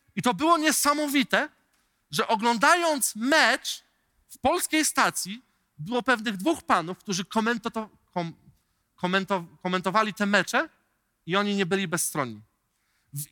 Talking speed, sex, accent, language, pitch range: 110 wpm, male, native, Polish, 190-260 Hz